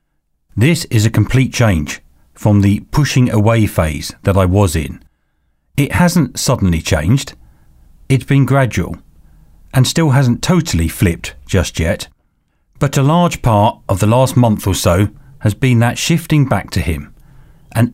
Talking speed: 155 wpm